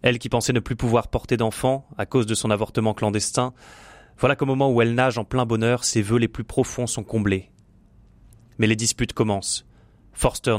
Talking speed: 200 wpm